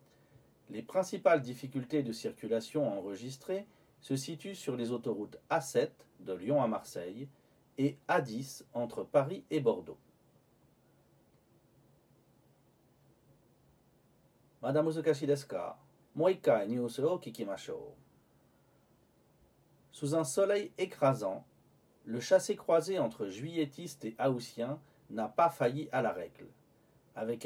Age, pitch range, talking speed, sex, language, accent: 40-59, 120-160 Hz, 90 wpm, male, French, French